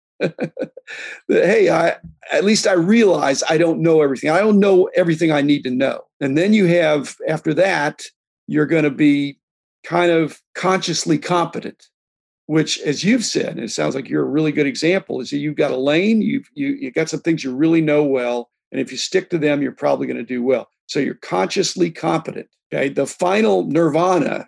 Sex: male